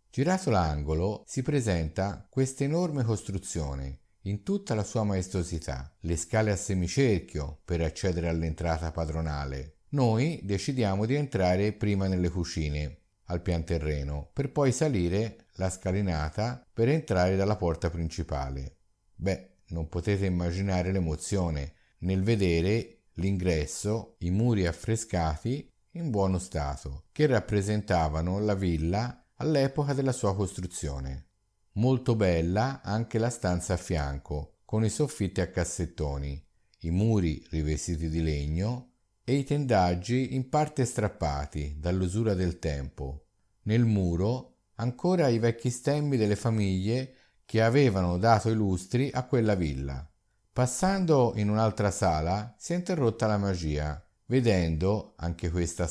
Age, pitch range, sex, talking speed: 50-69, 85-115 Hz, male, 125 wpm